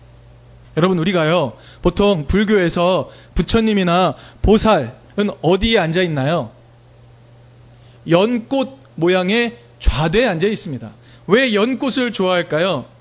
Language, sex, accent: Korean, male, native